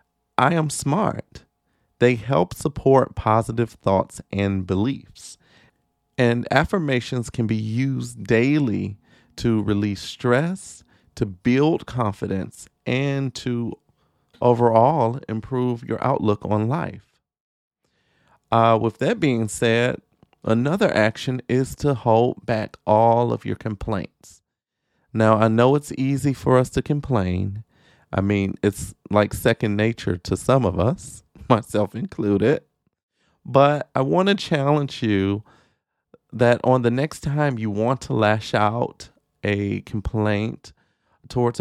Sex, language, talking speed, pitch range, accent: male, English, 125 wpm, 105-130 Hz, American